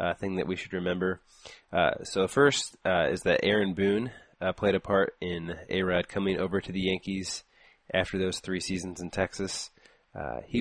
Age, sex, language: 20-39, male, English